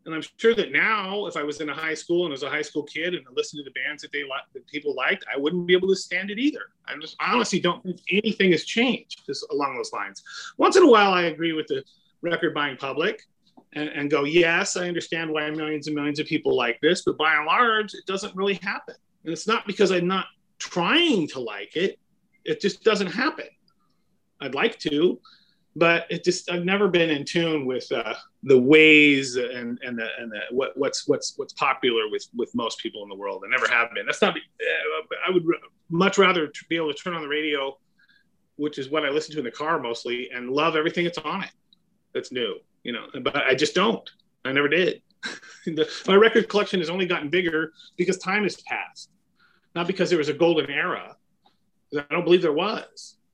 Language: English